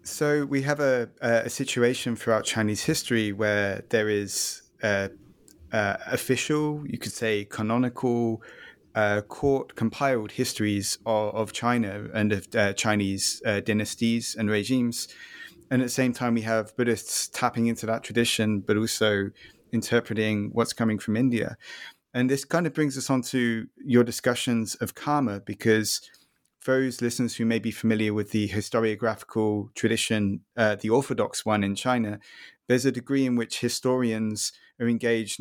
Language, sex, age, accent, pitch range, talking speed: English, male, 30-49, British, 105-120 Hz, 155 wpm